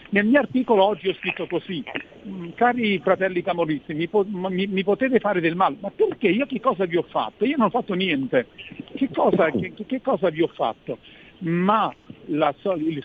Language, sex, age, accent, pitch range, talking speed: Italian, male, 50-69, native, 160-215 Hz, 180 wpm